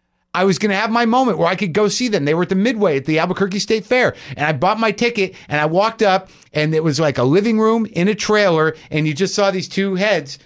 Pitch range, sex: 150-210 Hz, male